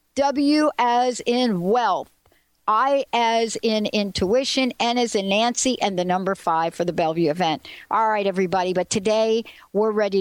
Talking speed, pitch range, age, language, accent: 160 wpm, 180-240 Hz, 60-79, English, American